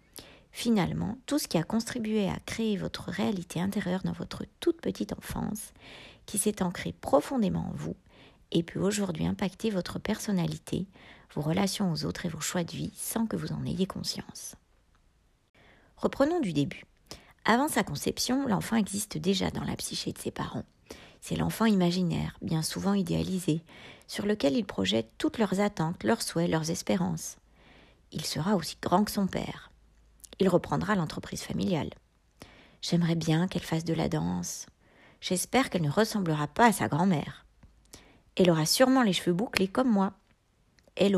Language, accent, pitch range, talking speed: French, French, 165-215 Hz, 160 wpm